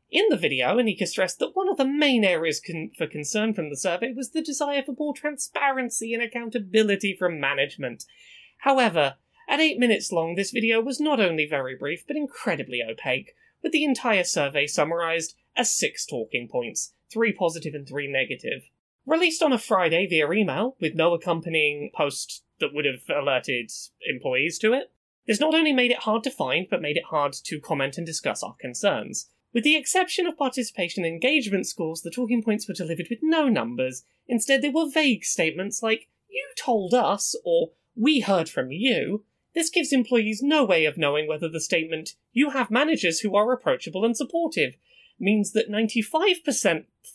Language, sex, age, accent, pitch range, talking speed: English, male, 20-39, British, 165-275 Hz, 180 wpm